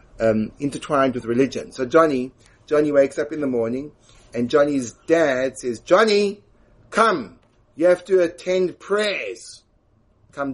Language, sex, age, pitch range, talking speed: English, male, 30-49, 115-140 Hz, 135 wpm